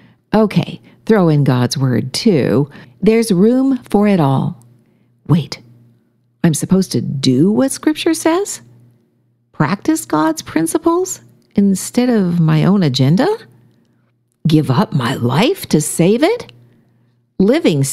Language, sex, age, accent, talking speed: English, female, 50-69, American, 115 wpm